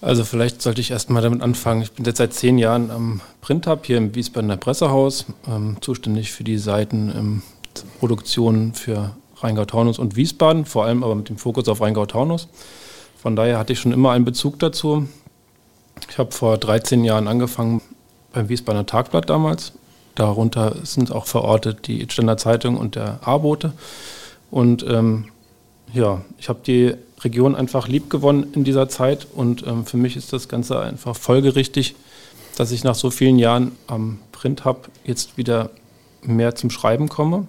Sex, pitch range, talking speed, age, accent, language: male, 115-135 Hz, 165 wpm, 40-59, German, German